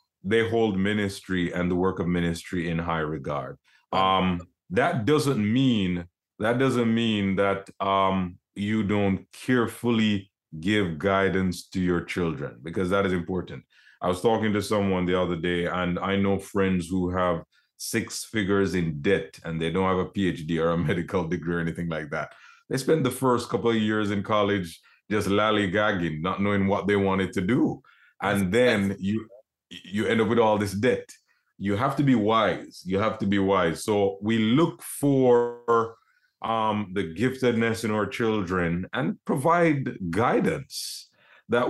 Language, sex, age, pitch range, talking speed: English, male, 30-49, 95-115 Hz, 165 wpm